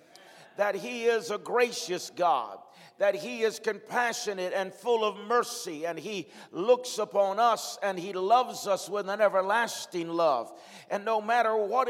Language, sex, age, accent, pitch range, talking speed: English, male, 50-69, American, 160-225 Hz, 155 wpm